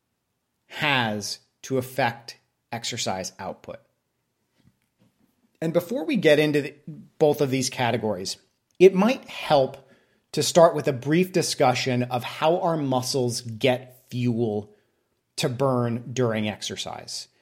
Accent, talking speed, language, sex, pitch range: American, 115 wpm, English, male, 125-165 Hz